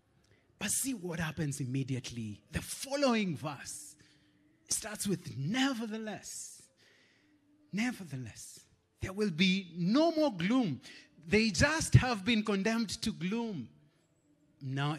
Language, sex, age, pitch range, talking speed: English, male, 30-49, 115-170 Hz, 105 wpm